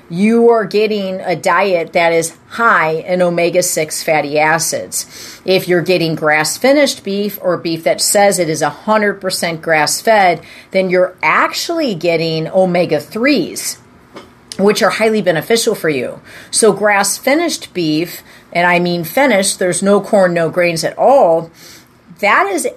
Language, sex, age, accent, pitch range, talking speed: English, female, 40-59, American, 170-210 Hz, 135 wpm